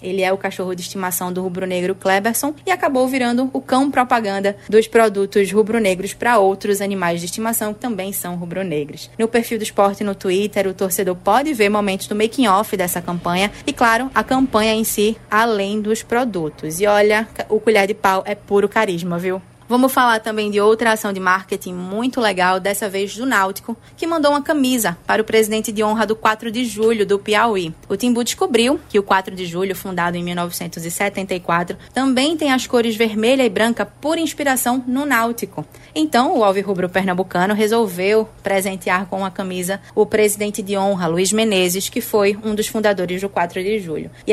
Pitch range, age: 190-235 Hz, 20-39